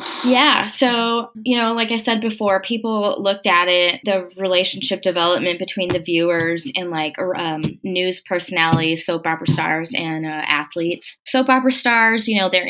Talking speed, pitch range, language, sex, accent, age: 160 wpm, 180-225 Hz, English, female, American, 20-39